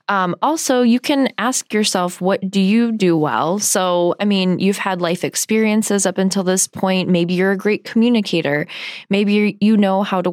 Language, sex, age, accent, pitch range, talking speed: English, female, 10-29, American, 175-205 Hz, 185 wpm